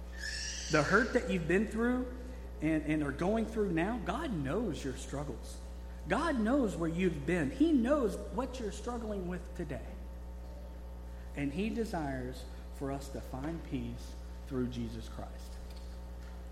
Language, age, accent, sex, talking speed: English, 50-69, American, male, 140 wpm